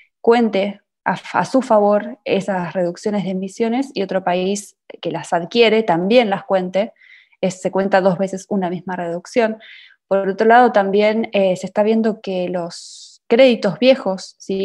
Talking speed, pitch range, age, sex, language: 160 wpm, 190-235 Hz, 20-39, female, Spanish